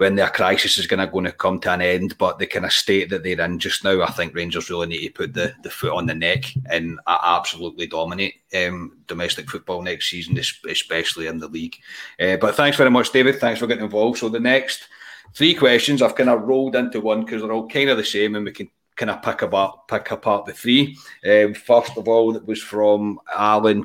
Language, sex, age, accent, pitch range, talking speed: English, male, 30-49, British, 105-130 Hz, 230 wpm